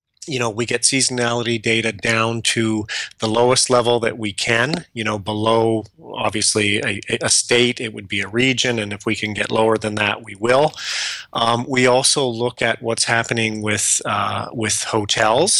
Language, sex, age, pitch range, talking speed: English, male, 30-49, 110-120 Hz, 180 wpm